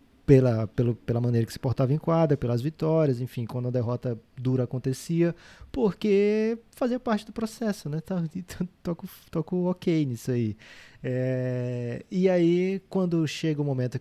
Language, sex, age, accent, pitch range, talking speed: Portuguese, male, 20-39, Brazilian, 125-155 Hz, 145 wpm